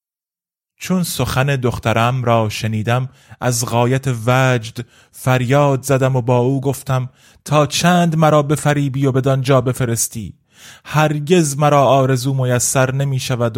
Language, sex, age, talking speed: Persian, male, 30-49, 135 wpm